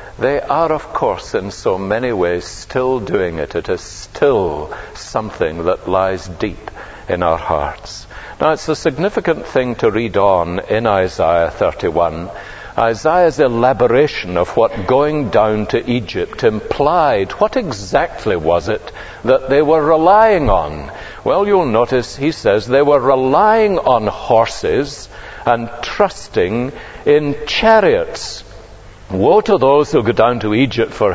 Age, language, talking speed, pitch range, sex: 60-79, English, 140 wpm, 130-210 Hz, male